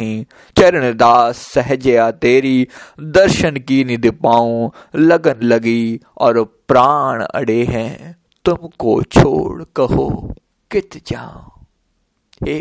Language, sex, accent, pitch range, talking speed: Hindi, male, native, 125-170 Hz, 95 wpm